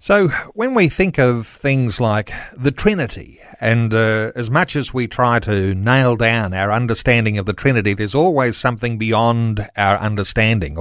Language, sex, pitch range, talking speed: English, male, 110-140 Hz, 165 wpm